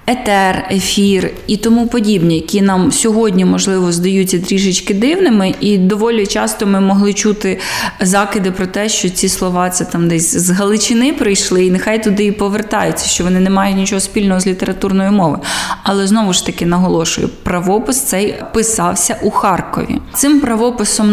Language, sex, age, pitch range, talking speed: Ukrainian, female, 20-39, 190-220 Hz, 160 wpm